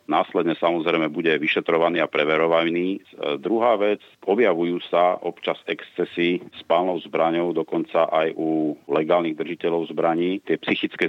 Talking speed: 120 wpm